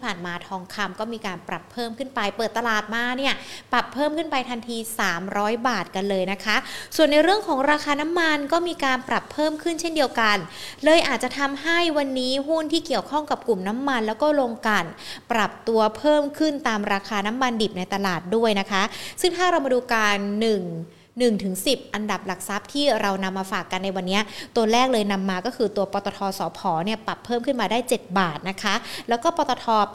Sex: female